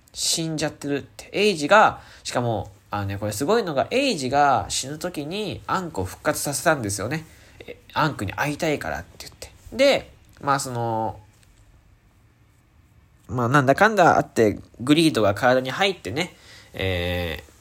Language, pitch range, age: Japanese, 100-155 Hz, 20-39